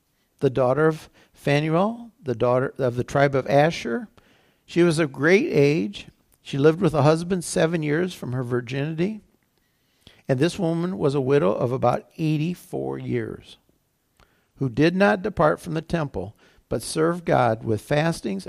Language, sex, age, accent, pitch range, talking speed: English, male, 60-79, American, 115-155 Hz, 155 wpm